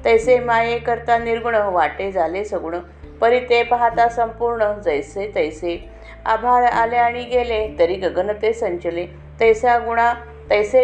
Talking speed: 125 wpm